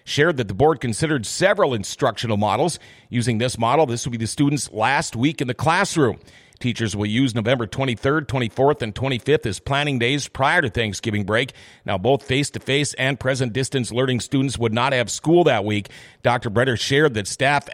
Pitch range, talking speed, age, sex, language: 115-145 Hz, 185 wpm, 40-59, male, English